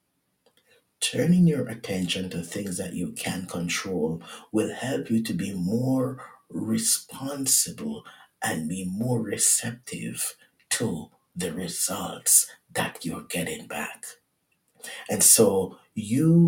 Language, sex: English, male